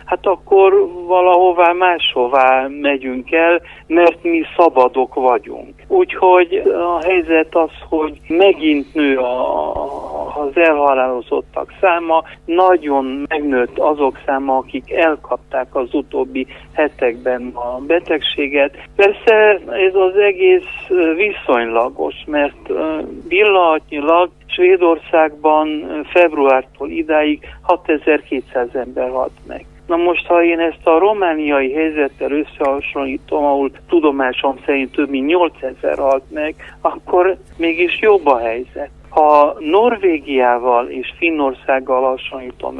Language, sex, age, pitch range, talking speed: Hungarian, male, 60-79, 135-180 Hz, 100 wpm